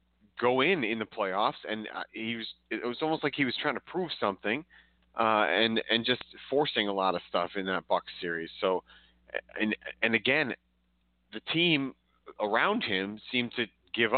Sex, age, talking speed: male, 30-49, 180 wpm